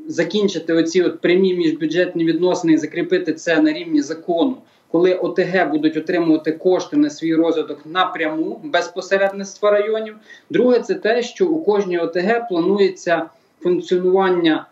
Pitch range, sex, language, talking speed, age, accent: 165-230 Hz, male, Ukrainian, 130 wpm, 20-39, native